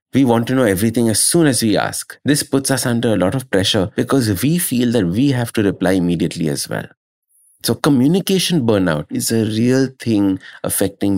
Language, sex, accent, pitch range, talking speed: English, male, Indian, 95-135 Hz, 200 wpm